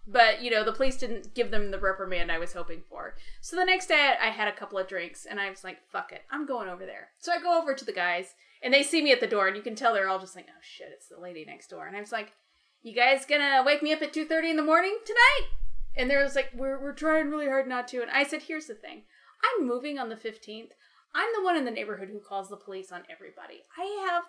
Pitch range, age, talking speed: 210-320 Hz, 30-49, 280 wpm